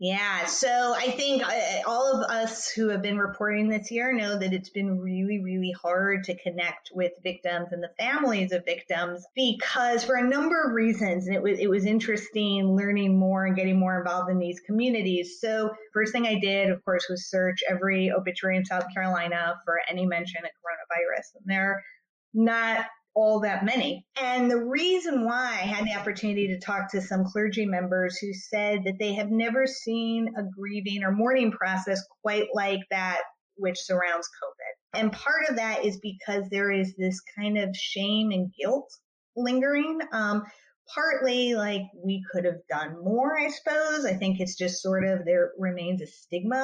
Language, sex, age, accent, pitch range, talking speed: English, female, 30-49, American, 185-230 Hz, 180 wpm